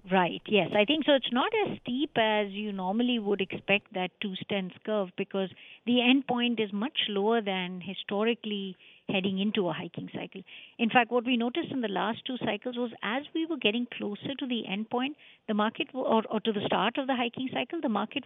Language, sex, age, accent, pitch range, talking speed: English, female, 50-69, Indian, 195-240 Hz, 215 wpm